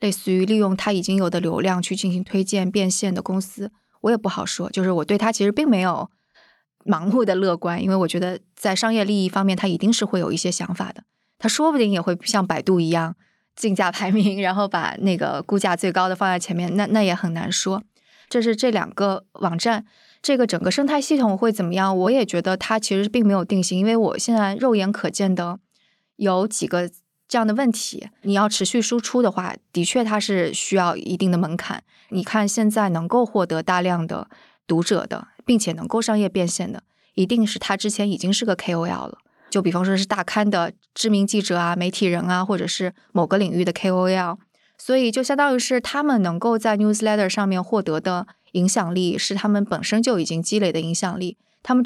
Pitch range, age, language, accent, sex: 180-215 Hz, 20-39, Chinese, native, female